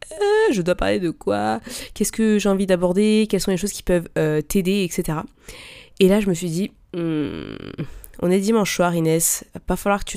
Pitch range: 155-185 Hz